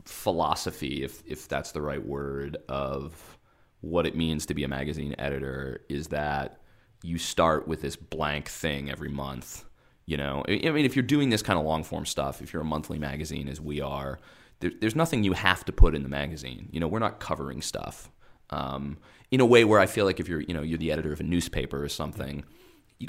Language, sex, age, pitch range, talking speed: English, male, 30-49, 75-90 Hz, 215 wpm